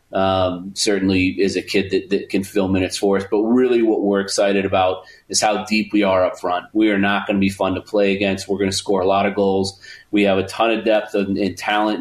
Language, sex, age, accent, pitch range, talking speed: English, male, 30-49, American, 95-105 Hz, 260 wpm